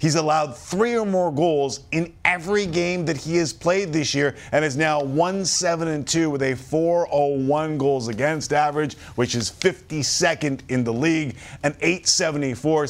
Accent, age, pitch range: American, 40-59, 90-150 Hz